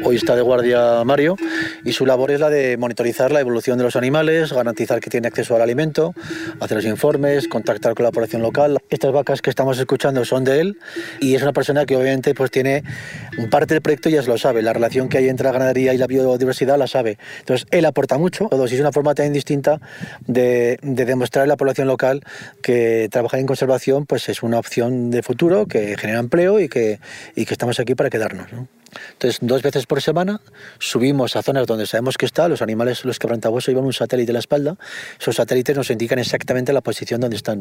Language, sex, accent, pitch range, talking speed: Spanish, male, Spanish, 125-150 Hz, 220 wpm